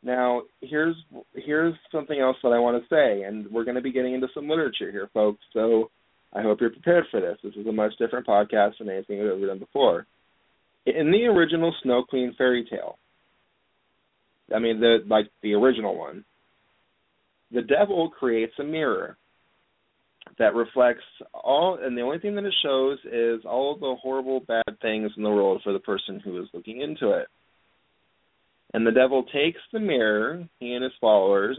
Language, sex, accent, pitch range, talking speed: English, male, American, 110-145 Hz, 185 wpm